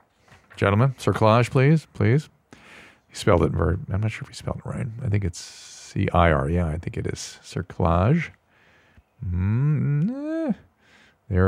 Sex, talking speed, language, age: male, 140 wpm, English, 40-59